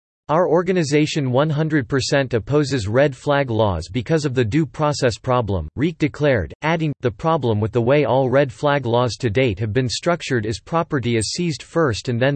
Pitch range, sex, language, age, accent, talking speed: 115-150 Hz, male, English, 40-59, American, 180 wpm